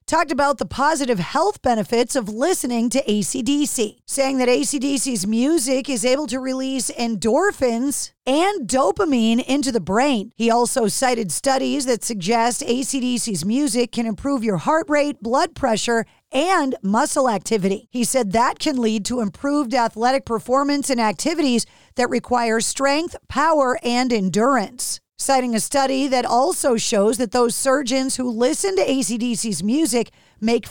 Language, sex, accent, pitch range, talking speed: English, female, American, 230-280 Hz, 145 wpm